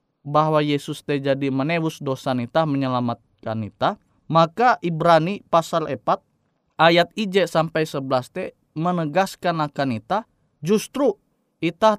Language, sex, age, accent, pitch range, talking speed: Indonesian, male, 20-39, native, 145-195 Hz, 115 wpm